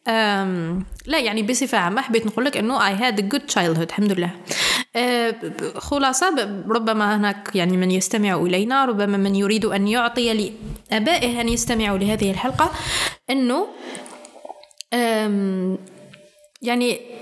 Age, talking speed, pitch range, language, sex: 20-39, 120 wpm, 205-275 Hz, Arabic, female